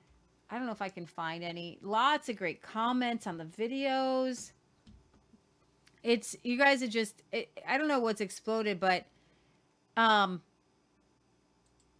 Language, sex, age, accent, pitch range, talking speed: English, female, 40-59, American, 165-225 Hz, 140 wpm